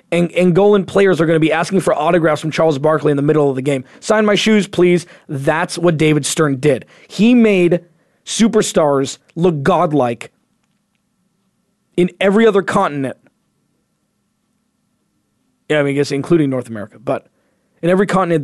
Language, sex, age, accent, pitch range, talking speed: English, male, 20-39, American, 155-200 Hz, 160 wpm